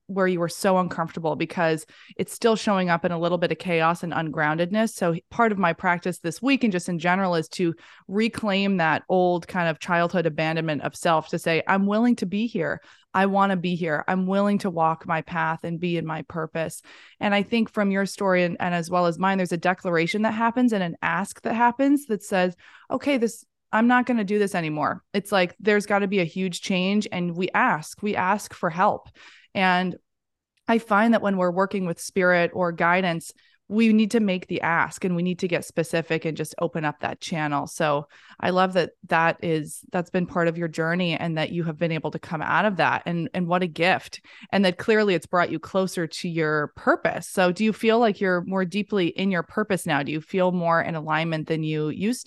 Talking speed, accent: 230 wpm, American